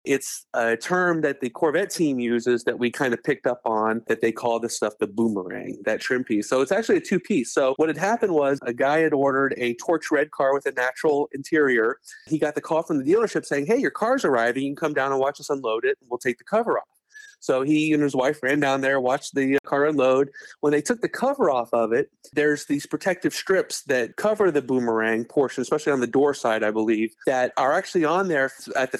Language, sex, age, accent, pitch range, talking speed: English, male, 30-49, American, 125-155 Hz, 245 wpm